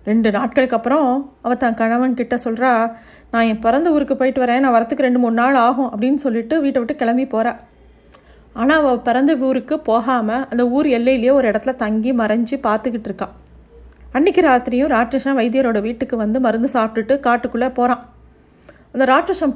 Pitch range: 225-270 Hz